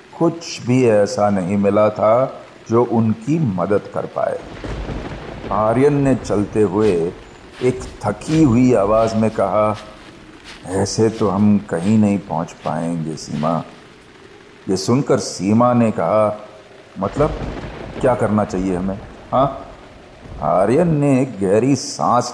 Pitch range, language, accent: 105-130 Hz, Hindi, native